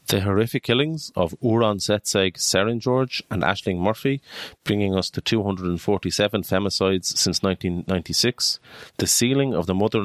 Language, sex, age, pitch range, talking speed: English, male, 30-49, 90-110 Hz, 135 wpm